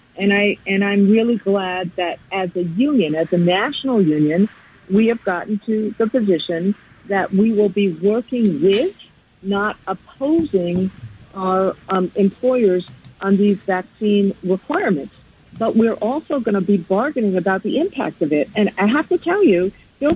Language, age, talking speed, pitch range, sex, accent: English, 50-69, 160 wpm, 190-250 Hz, female, American